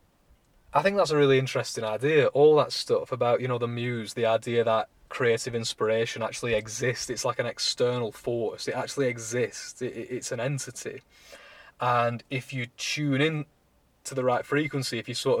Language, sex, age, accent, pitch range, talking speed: English, male, 20-39, British, 120-145 Hz, 185 wpm